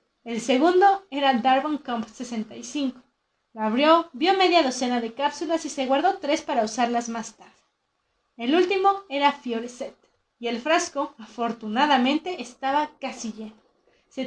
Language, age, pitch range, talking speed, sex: Spanish, 30-49, 230-300 Hz, 135 wpm, female